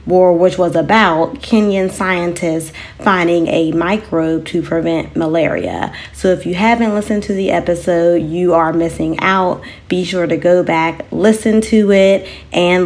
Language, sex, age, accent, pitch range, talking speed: English, female, 20-39, American, 165-205 Hz, 155 wpm